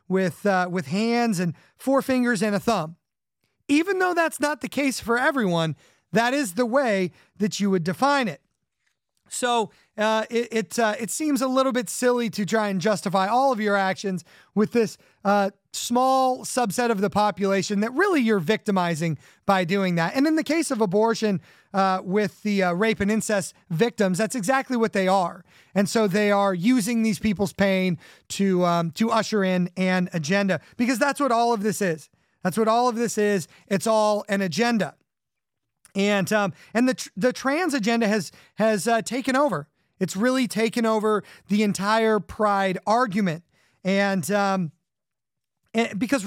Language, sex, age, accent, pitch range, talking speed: English, male, 30-49, American, 195-235 Hz, 175 wpm